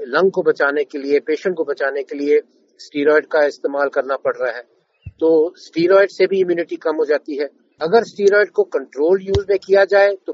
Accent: native